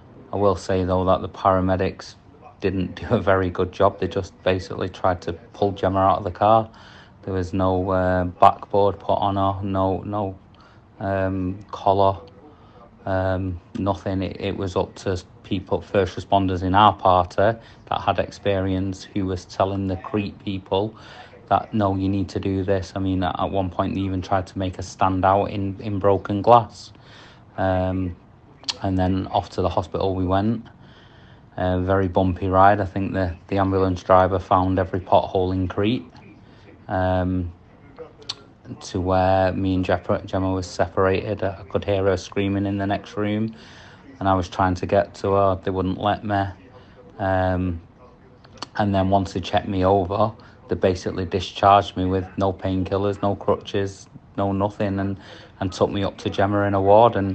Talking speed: 175 wpm